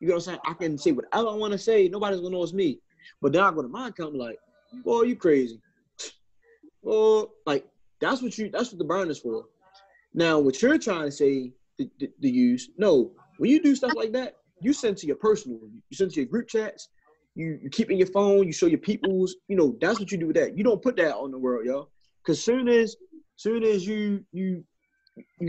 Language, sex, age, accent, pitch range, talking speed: English, male, 20-39, American, 140-210 Hz, 250 wpm